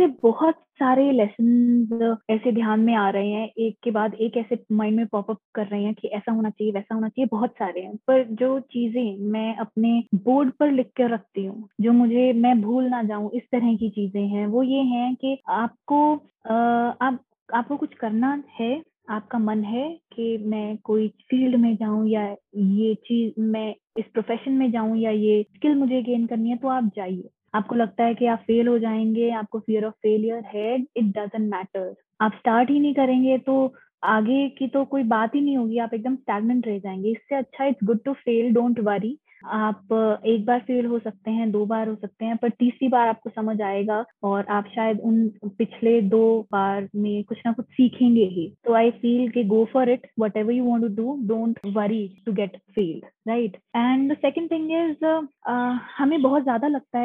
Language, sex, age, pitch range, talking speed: Hindi, female, 20-39, 215-255 Hz, 200 wpm